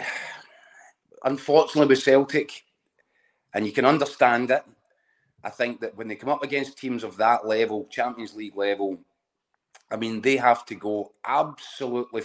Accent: British